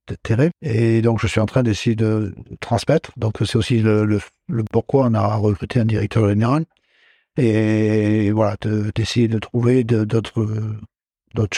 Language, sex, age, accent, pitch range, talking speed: French, male, 60-79, French, 110-125 Hz, 140 wpm